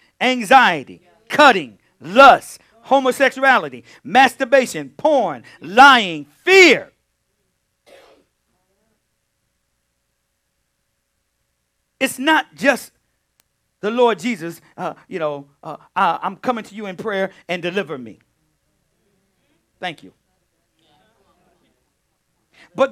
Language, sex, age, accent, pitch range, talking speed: English, male, 50-69, American, 205-285 Hz, 80 wpm